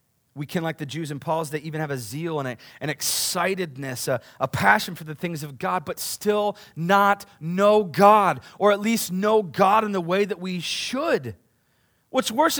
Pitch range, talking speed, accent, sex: 185-280 Hz, 195 wpm, American, male